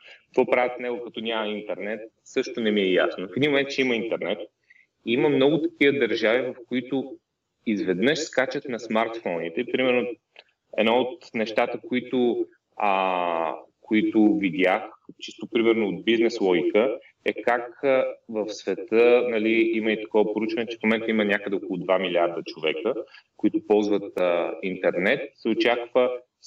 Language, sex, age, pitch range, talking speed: Bulgarian, male, 30-49, 105-125 Hz, 150 wpm